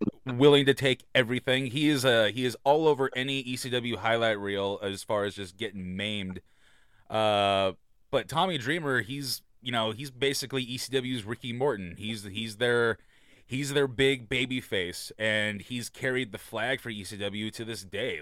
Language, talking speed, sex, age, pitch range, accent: English, 170 wpm, male, 30-49, 105-130 Hz, American